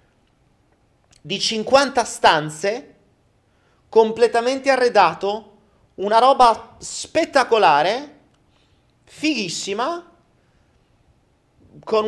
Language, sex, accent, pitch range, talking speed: Italian, male, native, 150-235 Hz, 50 wpm